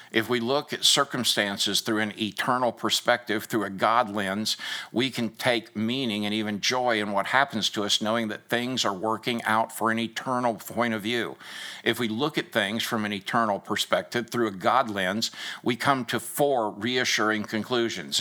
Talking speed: 185 wpm